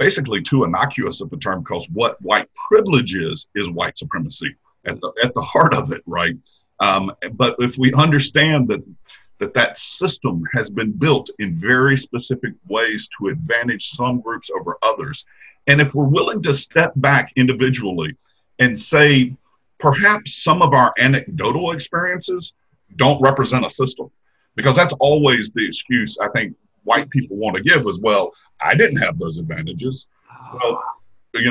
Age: 50-69